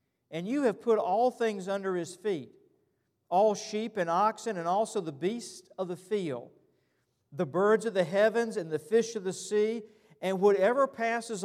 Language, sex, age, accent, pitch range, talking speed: English, male, 50-69, American, 155-205 Hz, 180 wpm